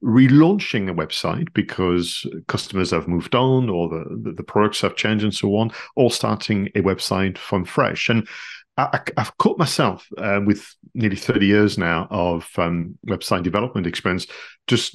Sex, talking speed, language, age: male, 160 wpm, English, 40-59